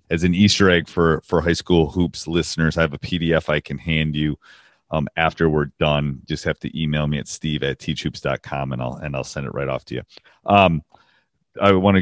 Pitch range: 75-90 Hz